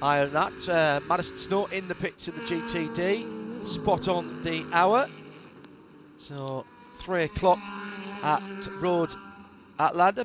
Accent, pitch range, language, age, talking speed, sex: British, 155-185 Hz, English, 40-59, 125 wpm, male